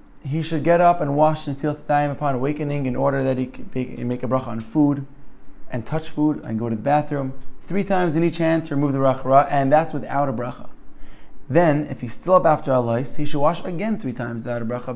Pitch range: 135-165 Hz